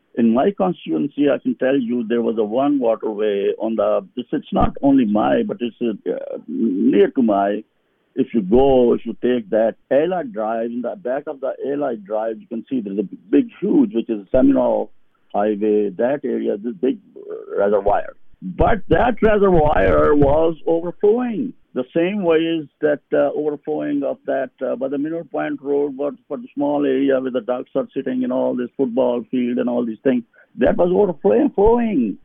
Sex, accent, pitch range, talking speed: male, Indian, 125-175 Hz, 180 wpm